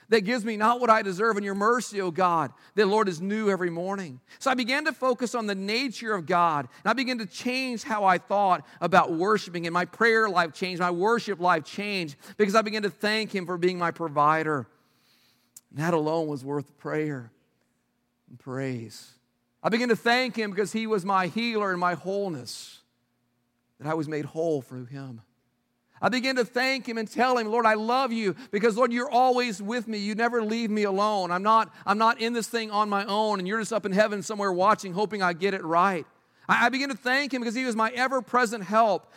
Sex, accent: male, American